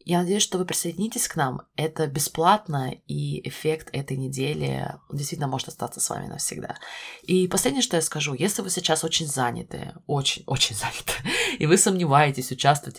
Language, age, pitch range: Russian, 20-39, 125-165 Hz